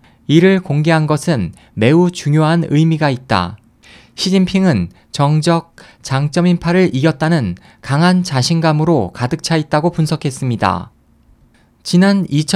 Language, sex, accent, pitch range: Korean, male, native, 130-175 Hz